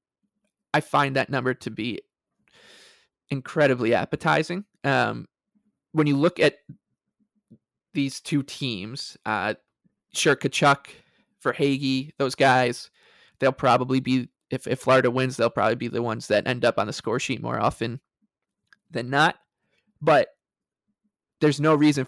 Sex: male